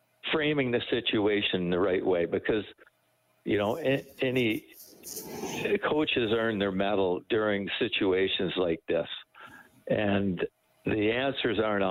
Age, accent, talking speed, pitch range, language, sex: 60-79, American, 110 wpm, 95-115 Hz, English, male